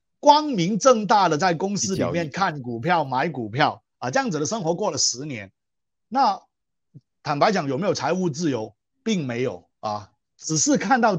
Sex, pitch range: male, 135-205 Hz